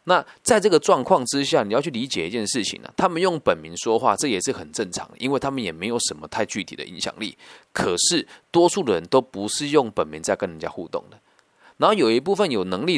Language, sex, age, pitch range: Chinese, male, 20-39, 105-160 Hz